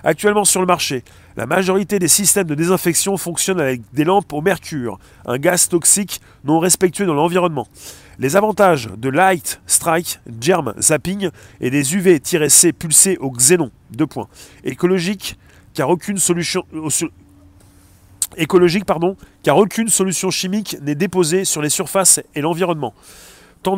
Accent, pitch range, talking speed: French, 145-190 Hz, 145 wpm